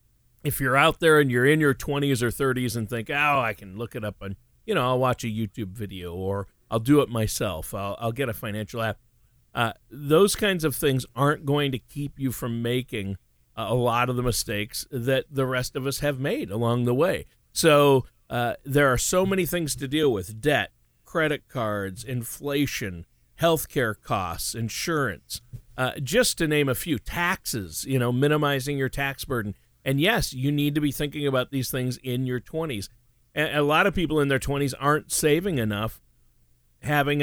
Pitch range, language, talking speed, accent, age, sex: 120-145 Hz, English, 190 wpm, American, 50-69, male